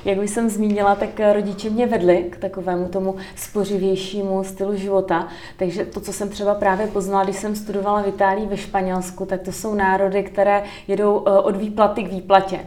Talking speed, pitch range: 180 wpm, 185-205 Hz